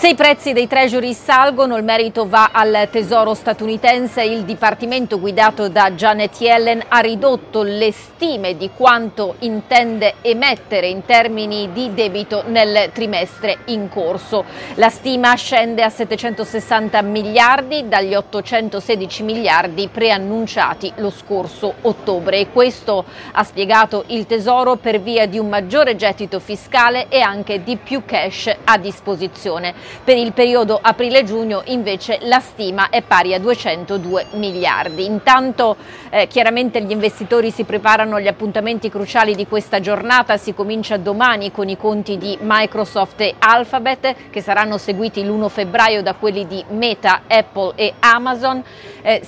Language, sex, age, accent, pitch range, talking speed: Italian, female, 40-59, native, 200-235 Hz, 140 wpm